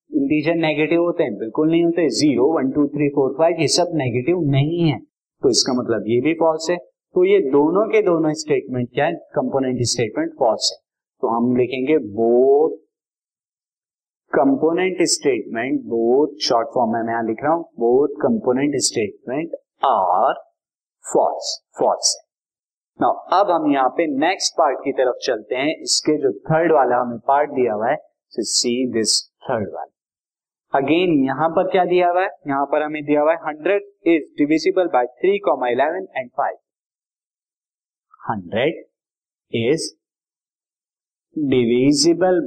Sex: male